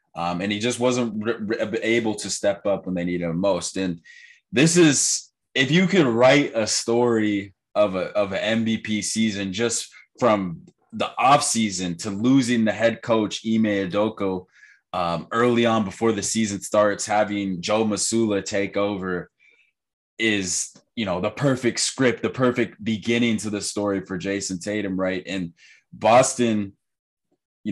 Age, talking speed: 20-39, 160 wpm